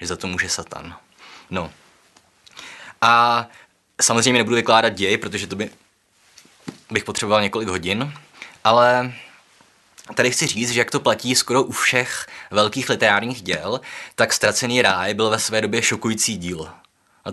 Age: 20-39